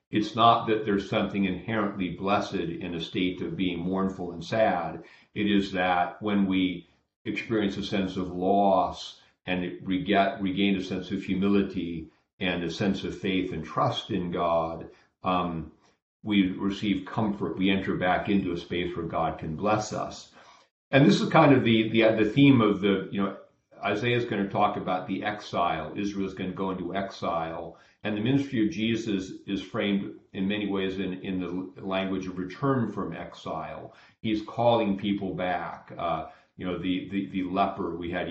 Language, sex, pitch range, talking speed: English, male, 90-105 Hz, 180 wpm